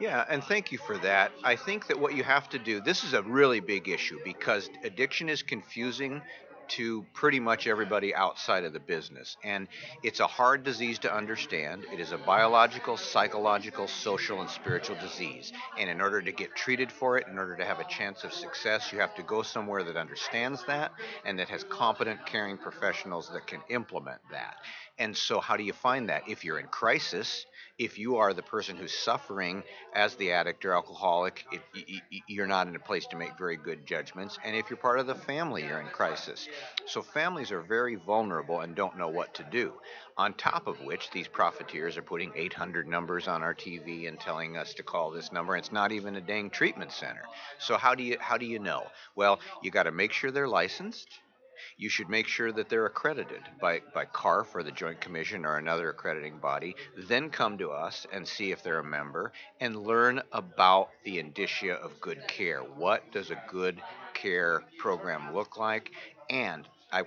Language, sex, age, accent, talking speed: English, male, 50-69, American, 200 wpm